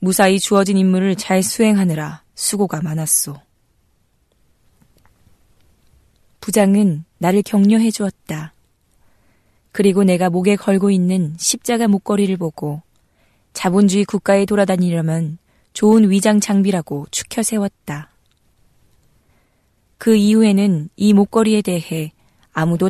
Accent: native